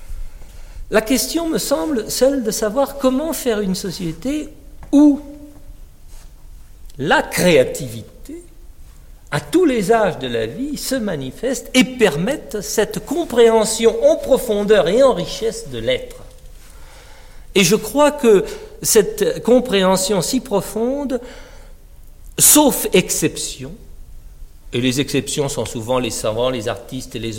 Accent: French